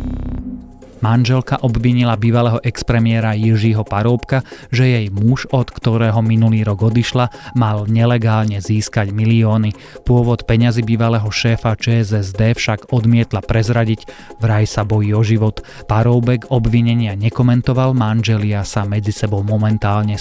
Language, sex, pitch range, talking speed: Slovak, male, 105-120 Hz, 115 wpm